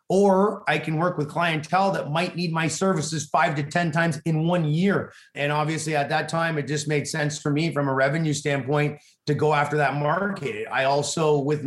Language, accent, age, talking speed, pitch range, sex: English, American, 30-49, 210 wpm, 150-180 Hz, male